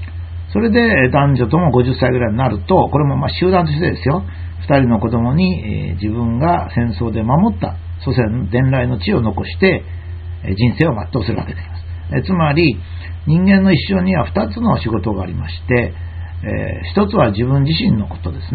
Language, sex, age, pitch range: Japanese, male, 60-79, 85-145 Hz